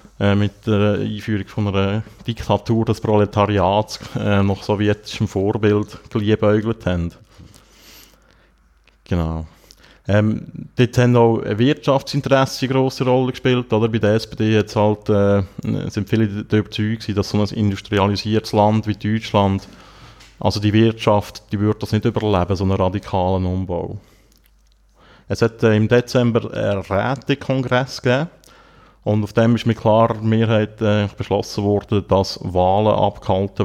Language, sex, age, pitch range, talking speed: German, male, 30-49, 95-110 Hz, 130 wpm